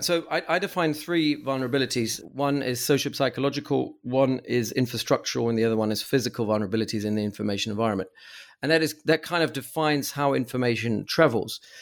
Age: 40-59